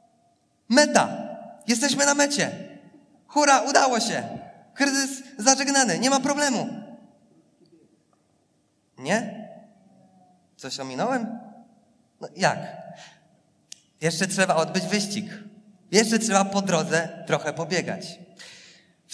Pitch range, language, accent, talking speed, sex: 180-230 Hz, Polish, native, 90 wpm, male